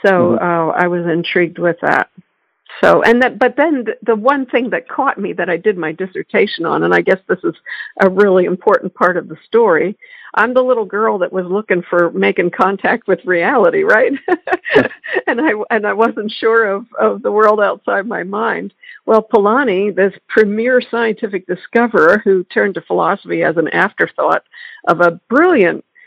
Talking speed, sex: 180 wpm, female